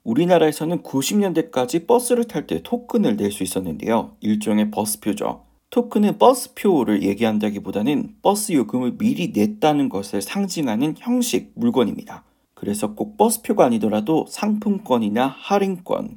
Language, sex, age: Korean, male, 40-59